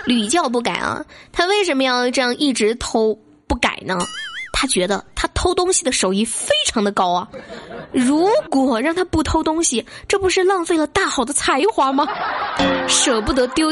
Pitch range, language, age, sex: 210-280 Hz, Chinese, 20-39, female